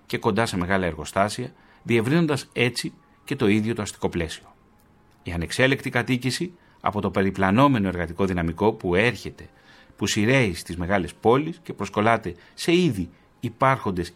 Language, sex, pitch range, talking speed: Greek, male, 95-130 Hz, 140 wpm